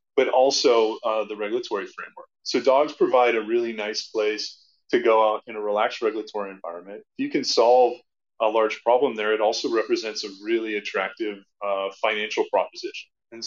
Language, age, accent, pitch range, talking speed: English, 20-39, American, 105-135 Hz, 175 wpm